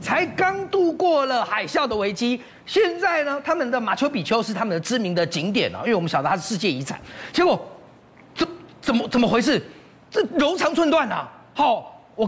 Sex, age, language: male, 40-59, Chinese